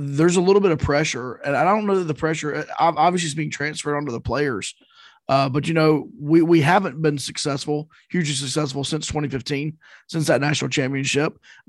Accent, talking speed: American, 195 wpm